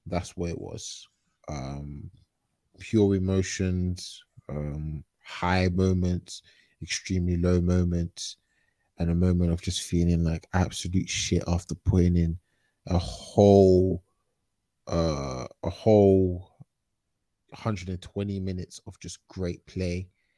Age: 20-39